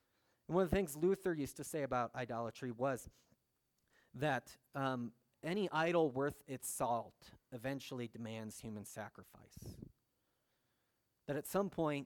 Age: 30-49